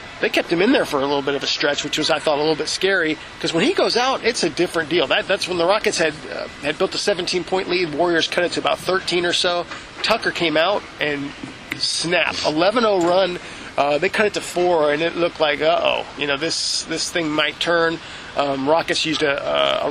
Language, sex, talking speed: English, male, 240 wpm